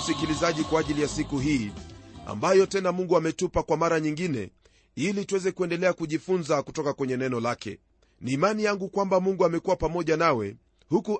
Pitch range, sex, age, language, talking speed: 145-195 Hz, male, 30-49, Swahili, 160 wpm